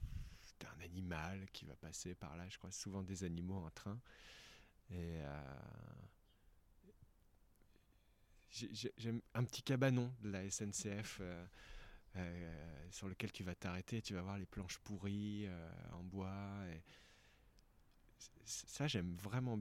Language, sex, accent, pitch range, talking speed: French, male, French, 90-110 Hz, 140 wpm